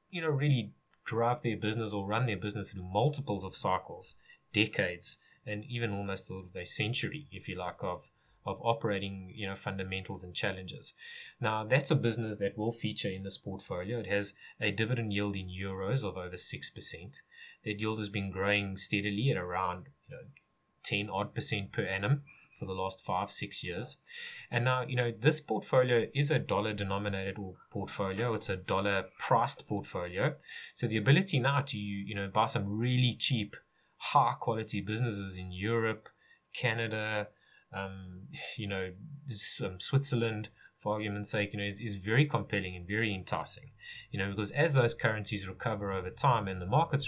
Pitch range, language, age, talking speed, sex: 100-120 Hz, English, 20-39, 170 wpm, male